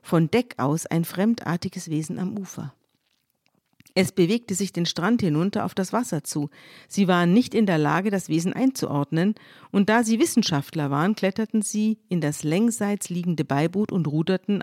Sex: female